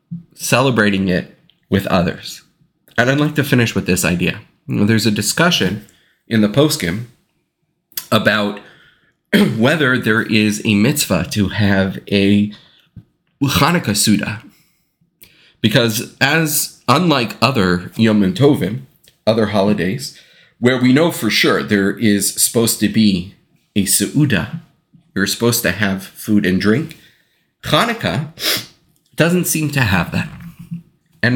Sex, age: male, 30-49